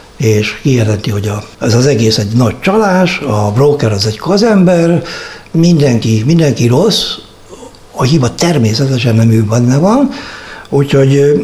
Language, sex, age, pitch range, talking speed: Hungarian, male, 60-79, 115-150 Hz, 135 wpm